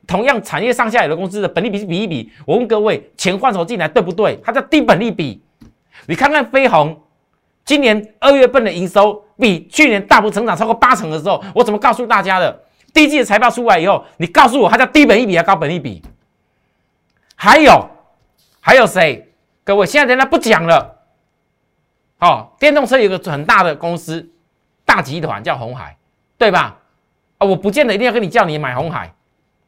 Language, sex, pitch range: Chinese, male, 165-235 Hz